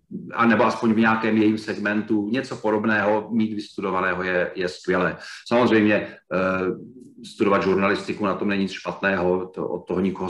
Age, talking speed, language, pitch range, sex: 40-59, 150 wpm, Czech, 95-110 Hz, male